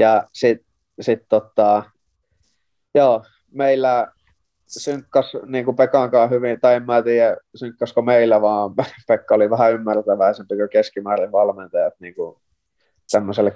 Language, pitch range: Finnish, 105-125 Hz